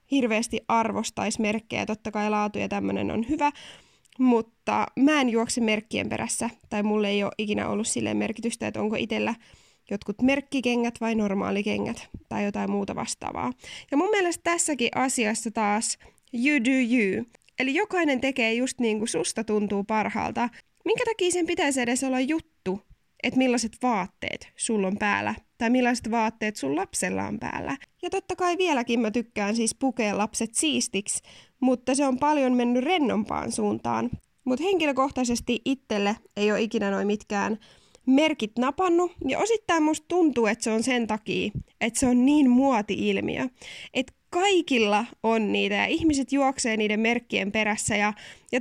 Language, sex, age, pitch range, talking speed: Finnish, female, 20-39, 210-275 Hz, 155 wpm